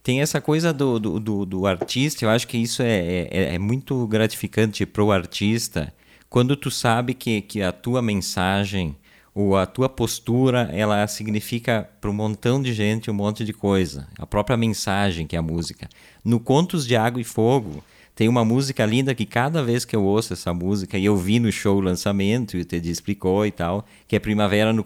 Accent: Brazilian